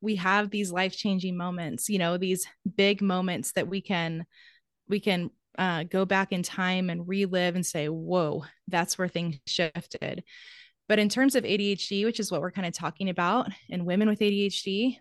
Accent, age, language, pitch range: American, 20-39, English, 175-205 Hz